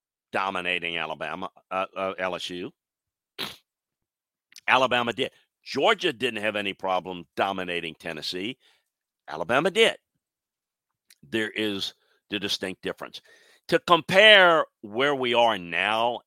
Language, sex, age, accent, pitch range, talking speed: English, male, 50-69, American, 95-120 Hz, 100 wpm